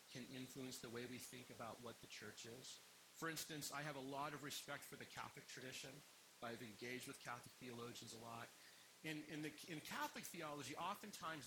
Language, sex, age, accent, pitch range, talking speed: English, male, 40-59, American, 120-155 Hz, 195 wpm